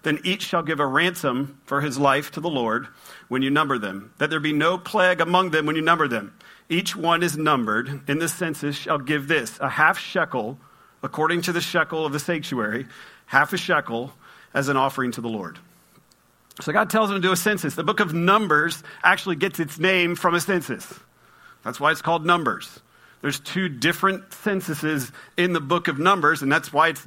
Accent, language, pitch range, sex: American, English, 145-180 Hz, male